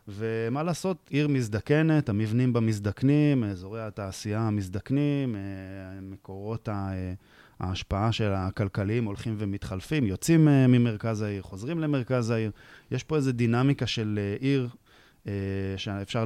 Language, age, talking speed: Hebrew, 20-39, 105 wpm